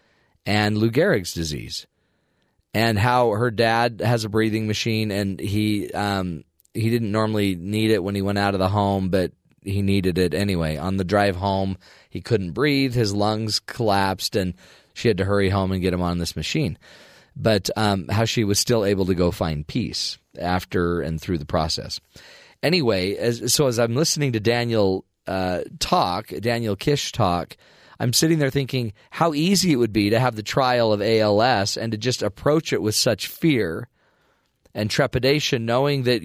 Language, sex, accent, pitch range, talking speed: English, male, American, 100-125 Hz, 180 wpm